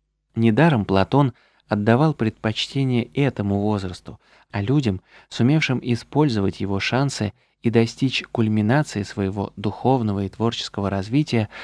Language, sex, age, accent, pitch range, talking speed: Russian, male, 20-39, native, 105-135 Hz, 105 wpm